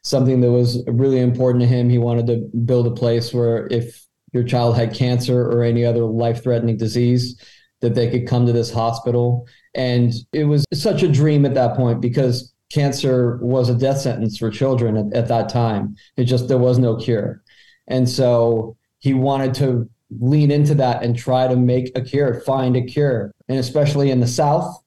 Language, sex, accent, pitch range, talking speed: English, male, American, 120-130 Hz, 195 wpm